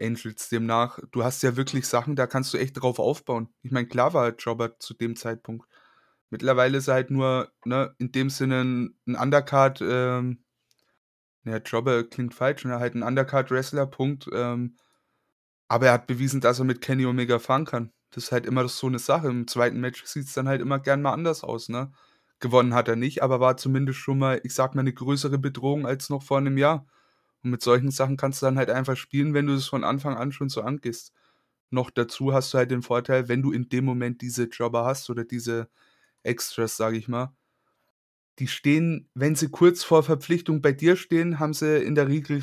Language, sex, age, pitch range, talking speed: German, male, 20-39, 120-140 Hz, 210 wpm